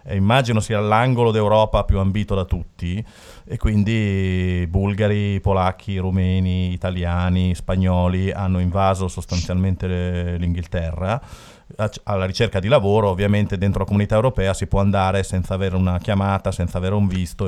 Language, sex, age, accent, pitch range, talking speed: Italian, male, 40-59, native, 90-110 Hz, 135 wpm